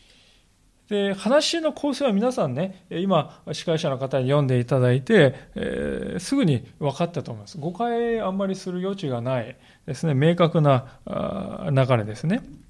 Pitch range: 130-190 Hz